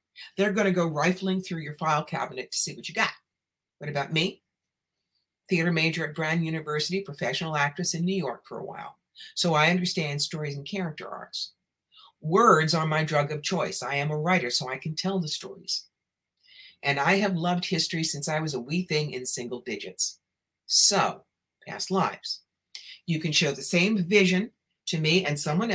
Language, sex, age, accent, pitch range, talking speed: English, female, 60-79, American, 145-185 Hz, 185 wpm